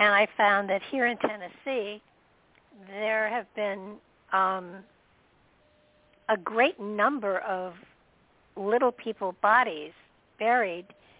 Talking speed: 100 wpm